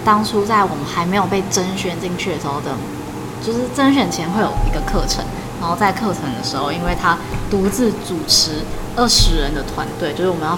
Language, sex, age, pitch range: Chinese, female, 20-39, 170-205 Hz